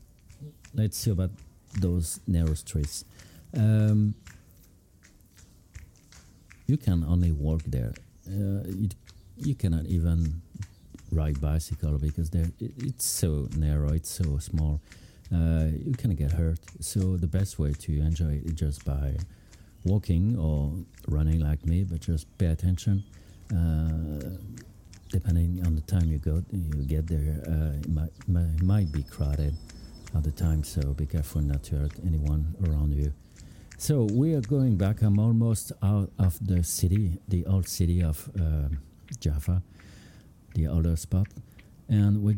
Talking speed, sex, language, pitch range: 140 wpm, male, English, 80-100 Hz